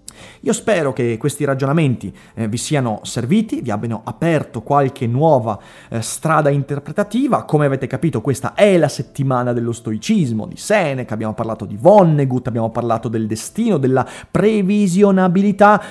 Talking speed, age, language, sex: 135 wpm, 30-49, Italian, male